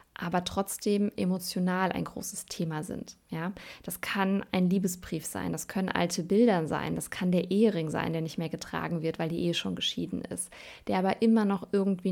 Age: 20-39